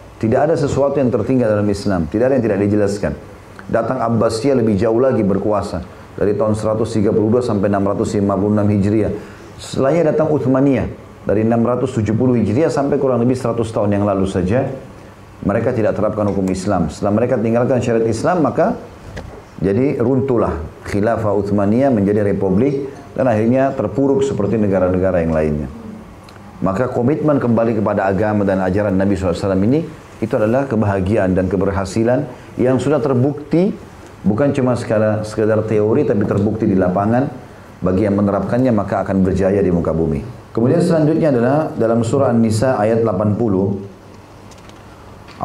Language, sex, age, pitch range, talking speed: Indonesian, male, 40-59, 100-125 Hz, 140 wpm